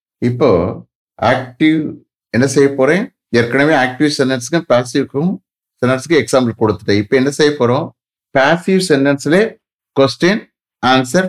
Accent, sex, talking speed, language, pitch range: Indian, male, 140 wpm, English, 105-150 Hz